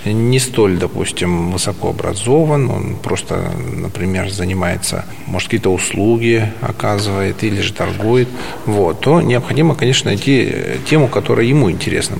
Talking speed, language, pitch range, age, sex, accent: 120 wpm, Russian, 95-125 Hz, 40-59, male, native